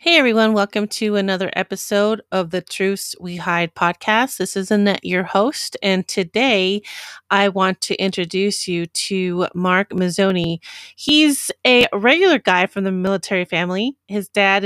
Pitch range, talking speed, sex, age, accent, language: 180-210 Hz, 150 wpm, female, 30-49, American, English